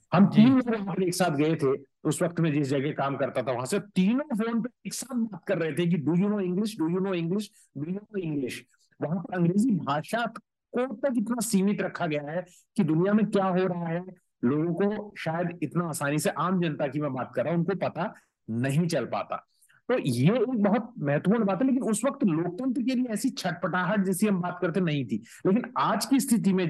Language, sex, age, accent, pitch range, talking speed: Hindi, male, 50-69, native, 145-200 Hz, 155 wpm